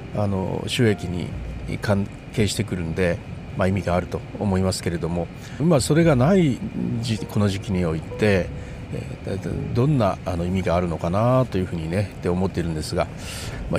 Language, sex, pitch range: Japanese, male, 90-125 Hz